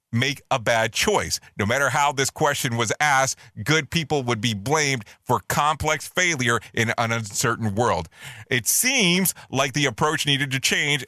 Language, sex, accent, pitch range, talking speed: English, male, American, 115-155 Hz, 170 wpm